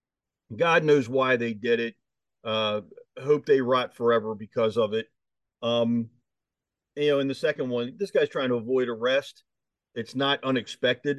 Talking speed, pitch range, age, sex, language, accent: 160 wpm, 120-165 Hz, 40-59, male, English, American